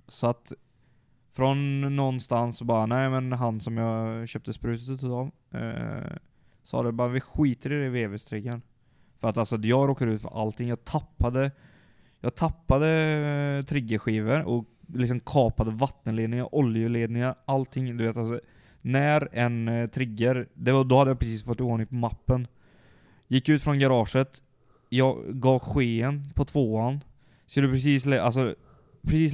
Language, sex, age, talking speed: English, male, 20-39, 160 wpm